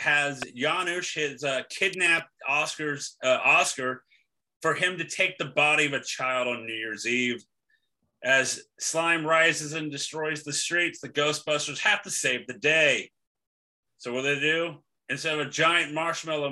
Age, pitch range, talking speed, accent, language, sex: 30-49, 135-160 Hz, 165 wpm, American, English, male